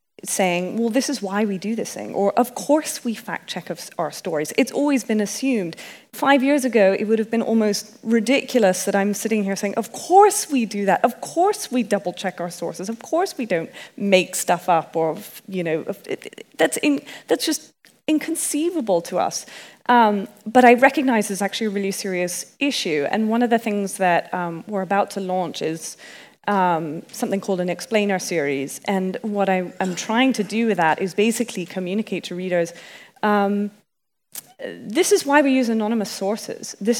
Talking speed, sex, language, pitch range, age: 185 wpm, female, English, 185-240 Hz, 30-49